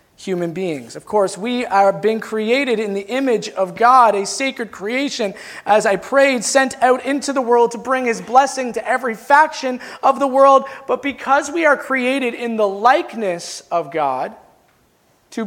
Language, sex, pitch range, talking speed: English, male, 205-275 Hz, 175 wpm